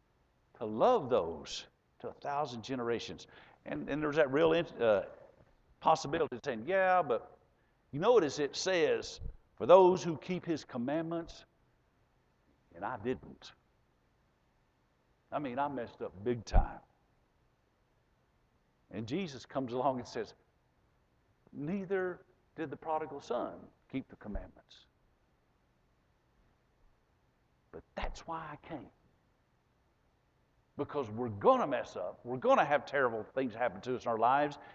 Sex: male